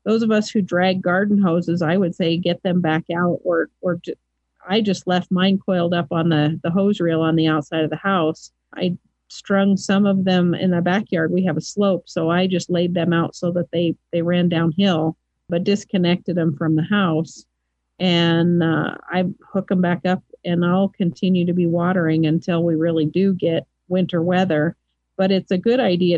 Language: English